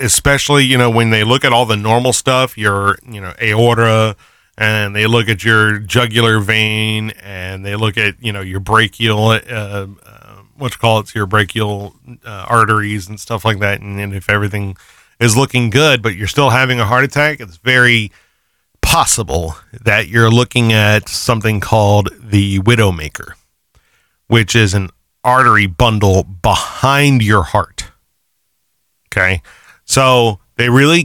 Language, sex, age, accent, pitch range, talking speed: English, male, 30-49, American, 105-125 Hz, 160 wpm